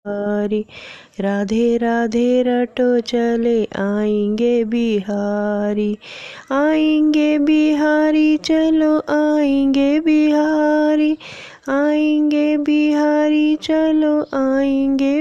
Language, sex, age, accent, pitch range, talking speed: Hindi, female, 20-39, native, 215-280 Hz, 60 wpm